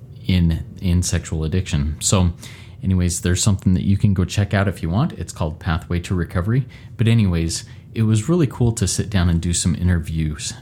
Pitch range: 90-115 Hz